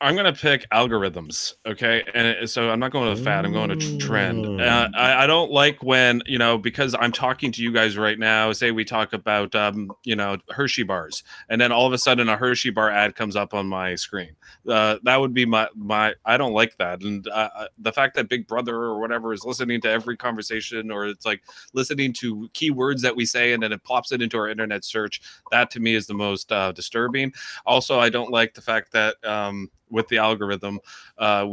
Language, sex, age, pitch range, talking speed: English, male, 30-49, 110-125 Hz, 225 wpm